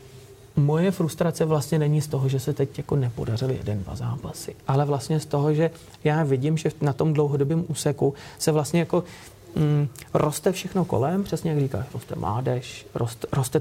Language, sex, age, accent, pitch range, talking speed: Czech, male, 30-49, native, 130-150 Hz, 170 wpm